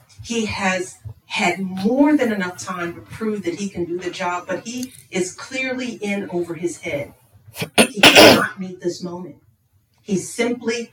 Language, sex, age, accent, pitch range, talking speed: English, female, 40-59, American, 125-190 Hz, 165 wpm